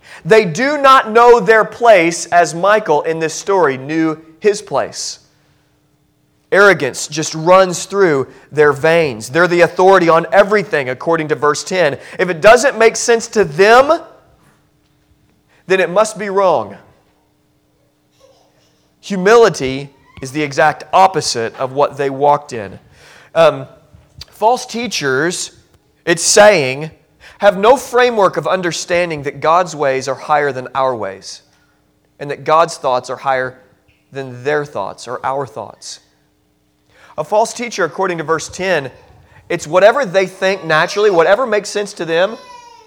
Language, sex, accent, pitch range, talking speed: English, male, American, 150-210 Hz, 135 wpm